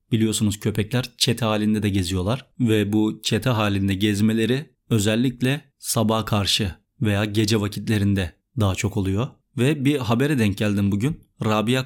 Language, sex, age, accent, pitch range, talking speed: Turkish, male, 30-49, native, 110-130 Hz, 135 wpm